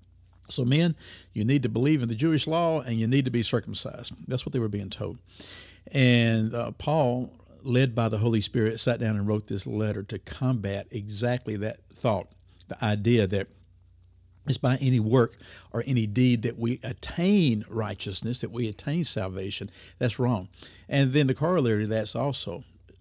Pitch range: 100-130 Hz